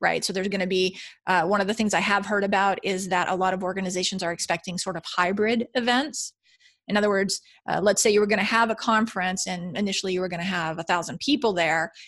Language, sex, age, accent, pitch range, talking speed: English, female, 30-49, American, 185-225 Hz, 255 wpm